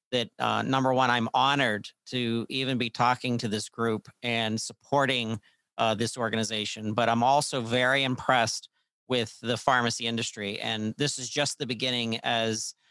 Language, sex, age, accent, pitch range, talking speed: English, male, 40-59, American, 115-135 Hz, 160 wpm